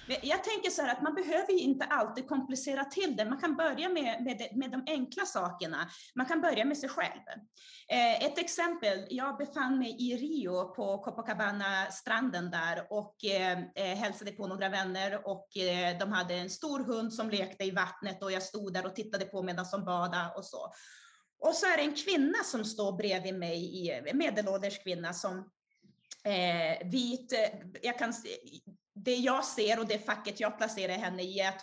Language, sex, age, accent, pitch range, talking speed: Swedish, female, 30-49, native, 195-275 Hz, 175 wpm